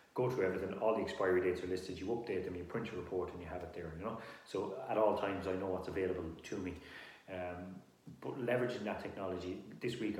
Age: 30-49